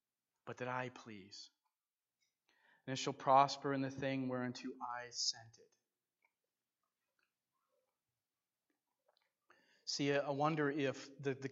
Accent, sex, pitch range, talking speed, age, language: American, male, 130-160 Hz, 105 wpm, 30-49, English